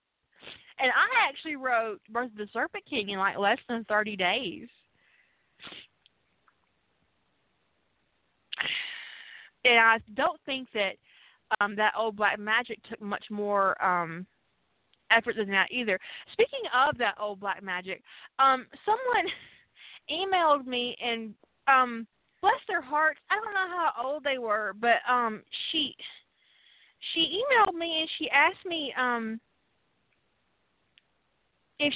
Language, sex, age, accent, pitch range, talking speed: English, female, 30-49, American, 225-320 Hz, 125 wpm